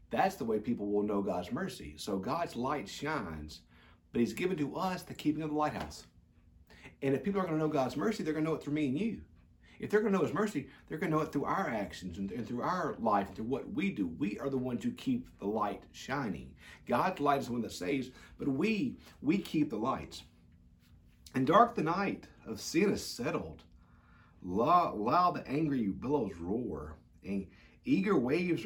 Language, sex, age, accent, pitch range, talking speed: English, male, 50-69, American, 85-130 Hz, 215 wpm